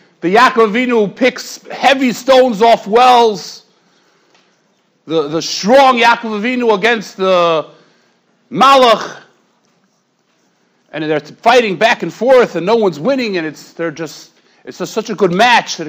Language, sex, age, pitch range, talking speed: English, male, 40-59, 175-260 Hz, 130 wpm